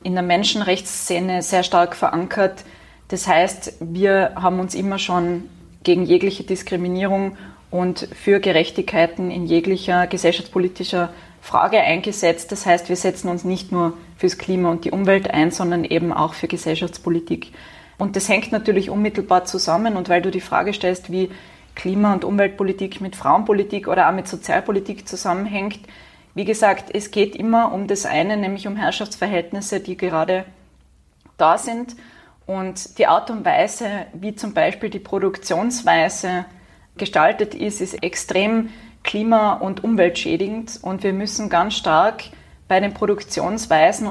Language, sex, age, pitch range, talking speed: German, female, 20-39, 180-205 Hz, 145 wpm